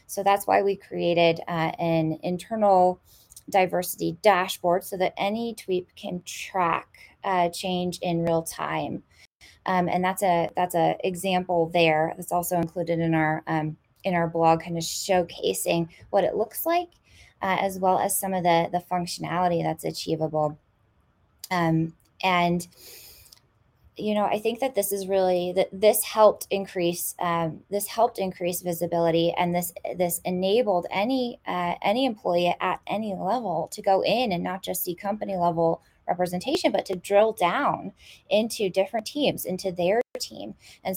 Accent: American